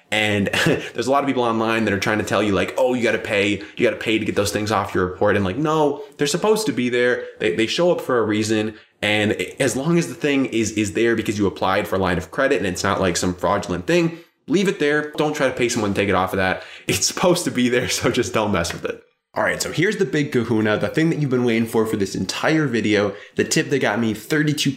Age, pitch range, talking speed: 20-39, 100-140 Hz, 285 wpm